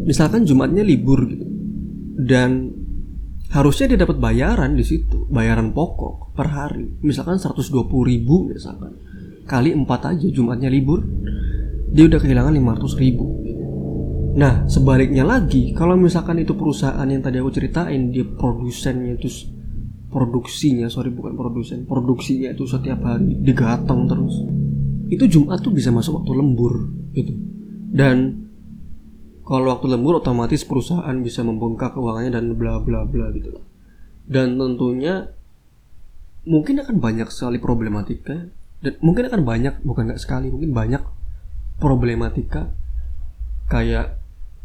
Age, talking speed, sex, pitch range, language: 20-39, 120 wpm, male, 115-140 Hz, Indonesian